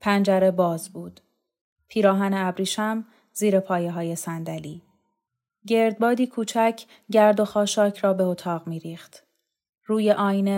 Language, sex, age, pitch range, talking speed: Persian, female, 30-49, 175-210 Hz, 115 wpm